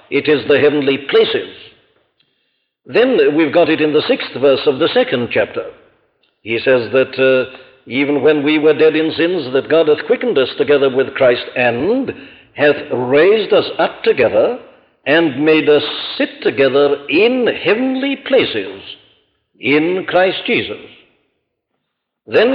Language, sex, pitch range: English, male, 135-180 Hz